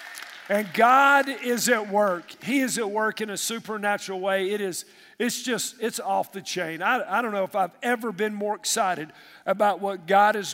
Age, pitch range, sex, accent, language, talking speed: 50-69, 195-250 Hz, male, American, English, 200 wpm